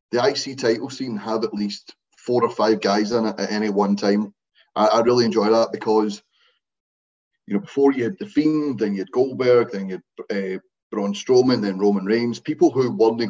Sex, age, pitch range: male, 30-49, 105-125 Hz